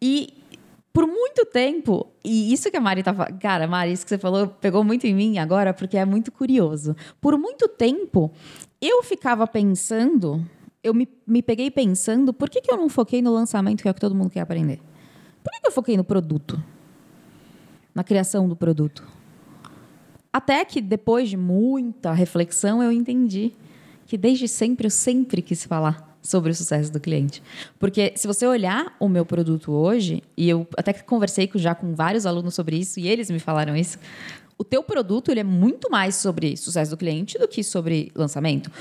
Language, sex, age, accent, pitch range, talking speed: Portuguese, female, 20-39, Brazilian, 170-245 Hz, 185 wpm